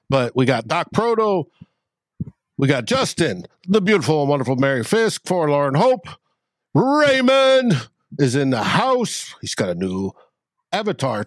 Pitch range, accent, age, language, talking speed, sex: 130-200 Hz, American, 60-79, English, 140 wpm, male